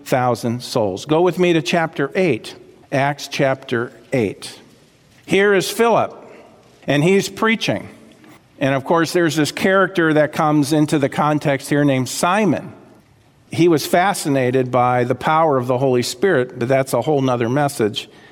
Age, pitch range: 50-69, 130-175 Hz